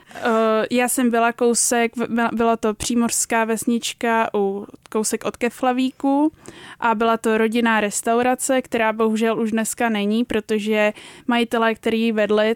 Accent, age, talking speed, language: native, 20-39, 120 wpm, Czech